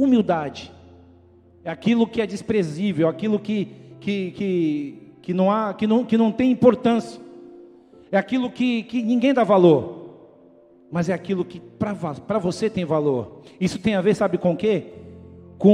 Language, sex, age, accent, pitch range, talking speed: Portuguese, male, 50-69, Brazilian, 165-240 Hz, 135 wpm